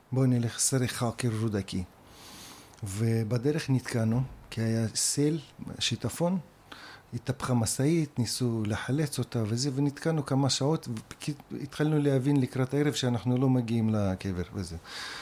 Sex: male